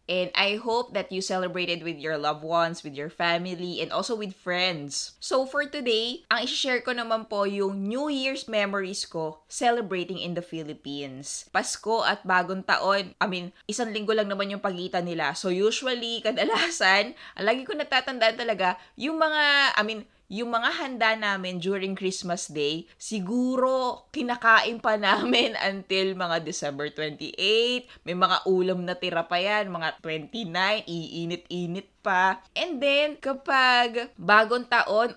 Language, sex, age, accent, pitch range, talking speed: Filipino, female, 20-39, native, 175-225 Hz, 150 wpm